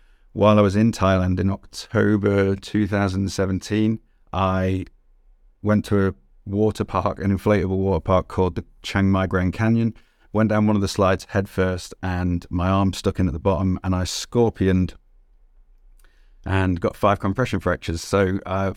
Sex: male